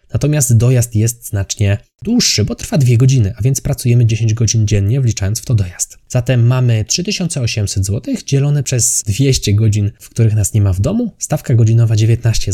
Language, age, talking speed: Polish, 20-39, 175 wpm